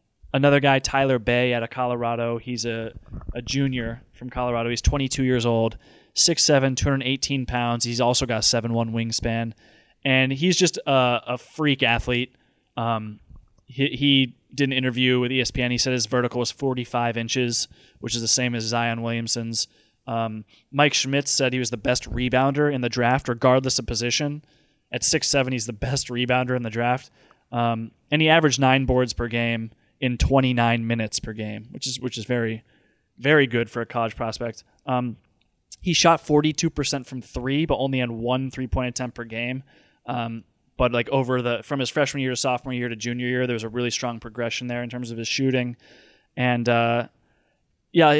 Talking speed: 185 wpm